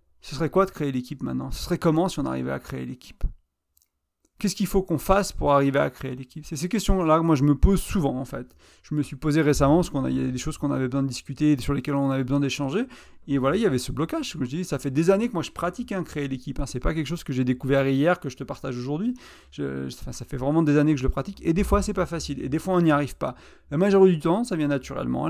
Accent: French